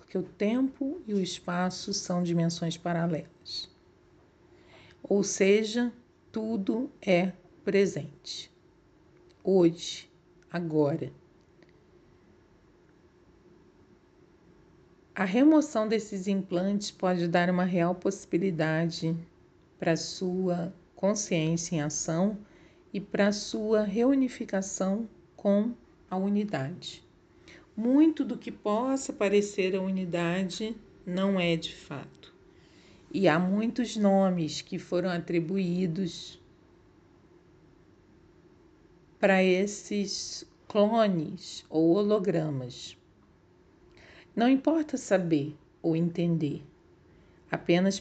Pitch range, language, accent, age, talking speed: 170-205 Hz, Portuguese, Brazilian, 40-59, 80 wpm